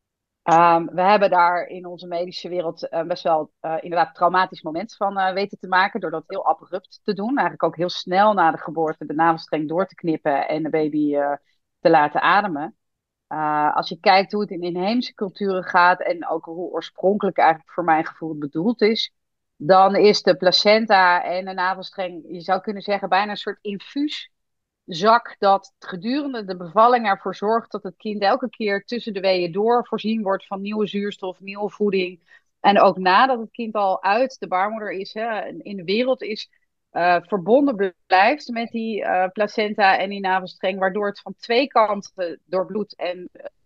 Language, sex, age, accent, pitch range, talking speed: Dutch, female, 30-49, Dutch, 175-210 Hz, 190 wpm